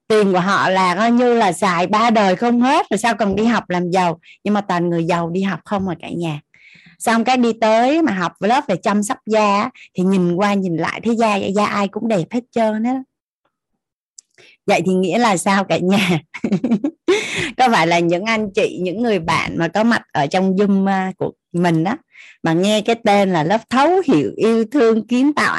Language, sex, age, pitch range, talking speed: Vietnamese, female, 20-39, 180-235 Hz, 220 wpm